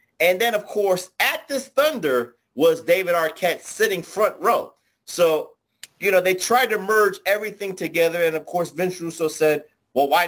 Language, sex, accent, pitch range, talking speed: English, male, American, 175-240 Hz, 175 wpm